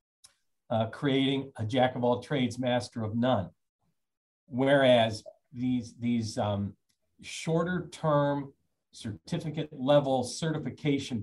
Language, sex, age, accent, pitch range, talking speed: English, male, 40-59, American, 110-145 Hz, 75 wpm